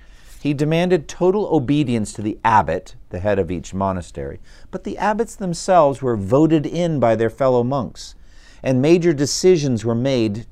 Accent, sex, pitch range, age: American, male, 95-140 Hz, 50-69